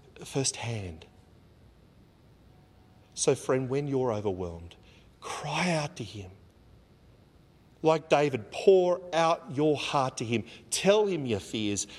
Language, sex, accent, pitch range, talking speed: English, male, Australian, 95-135 Hz, 115 wpm